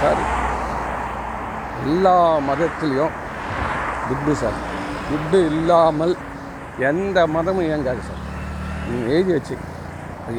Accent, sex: native, male